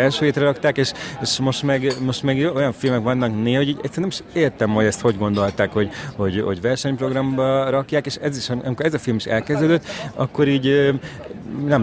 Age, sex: 30-49, male